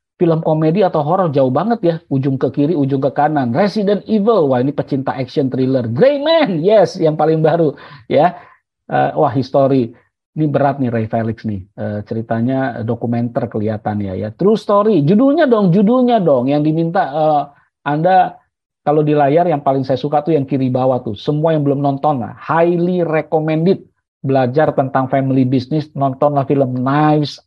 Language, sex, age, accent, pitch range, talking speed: Indonesian, male, 50-69, native, 135-170 Hz, 170 wpm